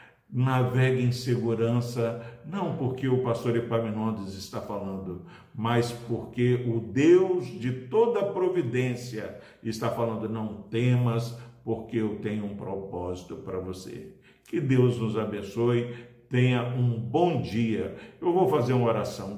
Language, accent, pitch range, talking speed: Portuguese, Brazilian, 115-140 Hz, 125 wpm